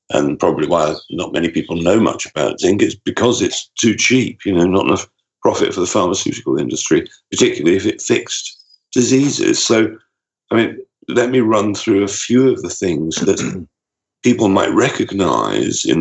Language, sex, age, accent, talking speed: English, male, 50-69, British, 170 wpm